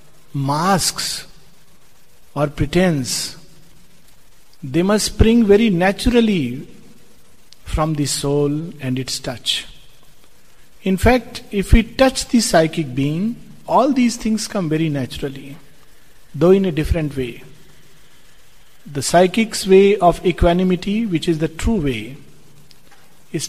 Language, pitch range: English, 150-195 Hz